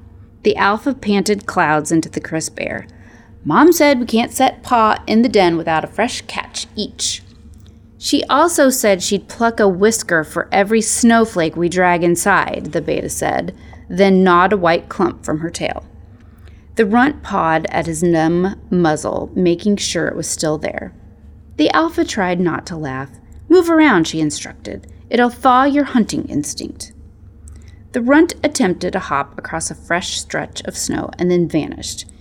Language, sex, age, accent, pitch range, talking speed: English, female, 30-49, American, 155-225 Hz, 165 wpm